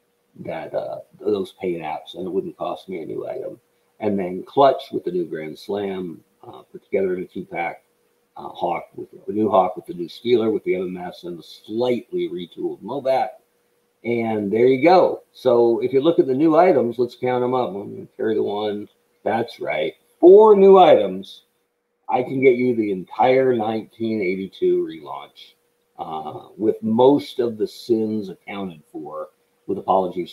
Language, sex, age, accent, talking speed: English, male, 50-69, American, 175 wpm